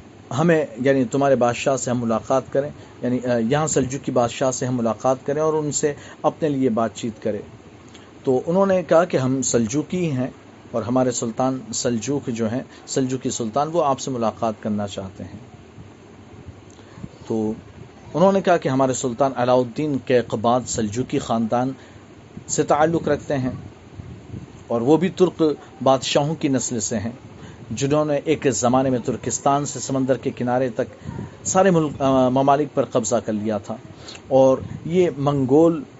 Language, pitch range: Urdu, 115-145 Hz